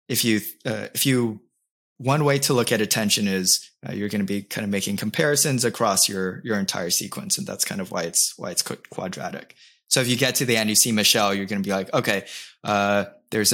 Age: 20-39